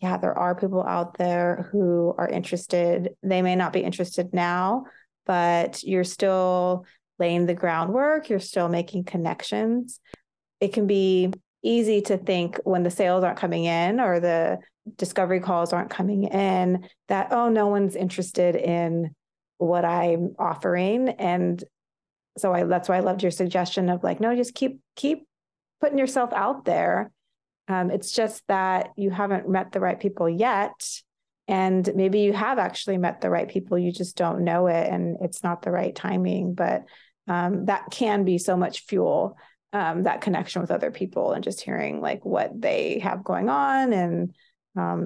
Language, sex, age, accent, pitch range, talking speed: English, female, 30-49, American, 175-215 Hz, 170 wpm